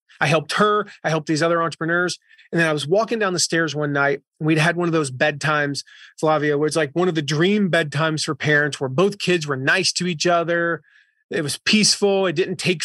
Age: 30-49